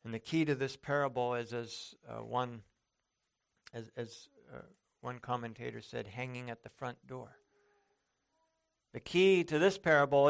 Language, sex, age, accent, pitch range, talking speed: English, male, 50-69, American, 120-150 Hz, 150 wpm